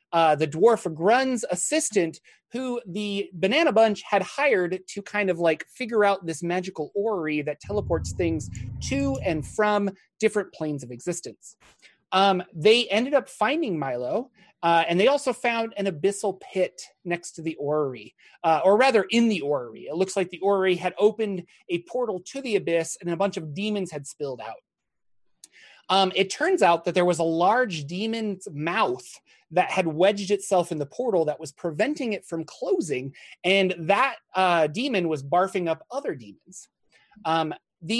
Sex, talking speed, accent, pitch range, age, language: male, 170 wpm, American, 165-220 Hz, 30-49, English